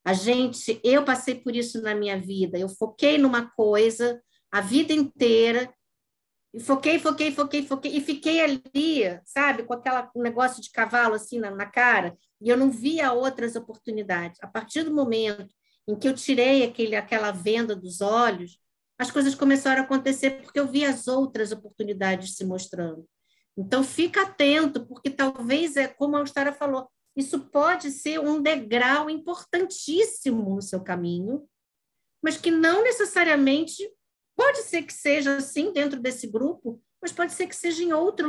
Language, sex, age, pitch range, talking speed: Portuguese, female, 50-69, 225-285 Hz, 165 wpm